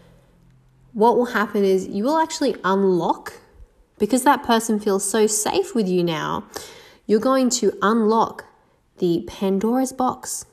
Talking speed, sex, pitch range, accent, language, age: 135 wpm, female, 185-250 Hz, Australian, English, 20-39